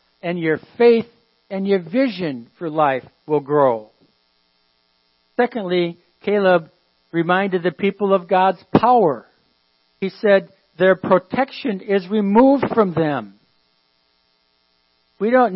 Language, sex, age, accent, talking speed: English, male, 60-79, American, 110 wpm